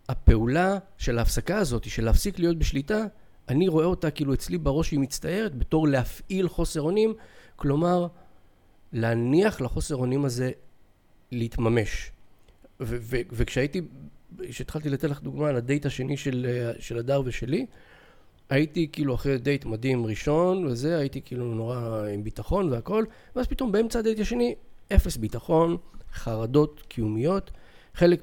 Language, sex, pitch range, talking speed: Hebrew, male, 115-155 Hz, 135 wpm